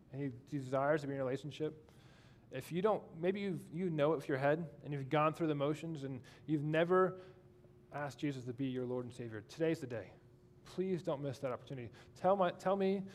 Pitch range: 120-155 Hz